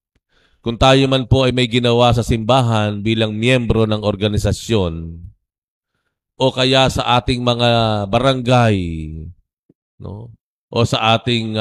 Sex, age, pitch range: male, 50-69, 90-120 Hz